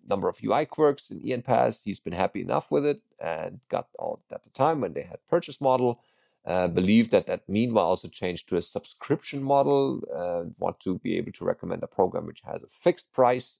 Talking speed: 210 wpm